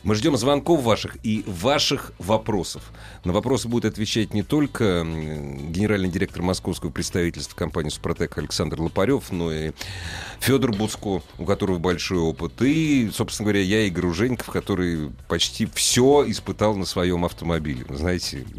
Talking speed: 140 wpm